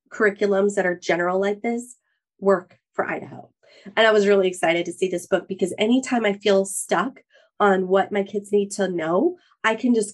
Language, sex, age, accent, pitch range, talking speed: English, female, 30-49, American, 190-240 Hz, 195 wpm